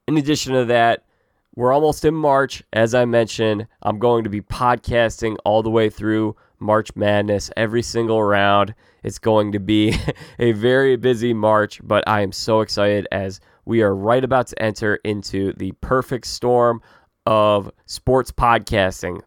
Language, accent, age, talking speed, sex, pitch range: English, American, 20-39, 160 wpm, male, 100-125 Hz